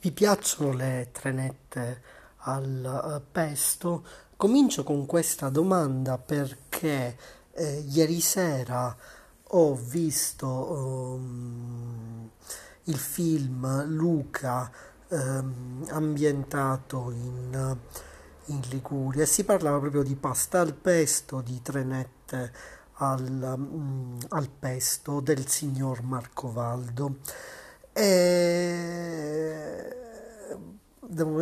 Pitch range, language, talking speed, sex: 130-150 Hz, Italian, 85 wpm, male